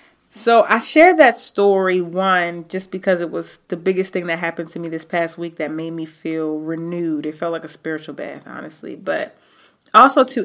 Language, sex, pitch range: English, female, 170-220 Hz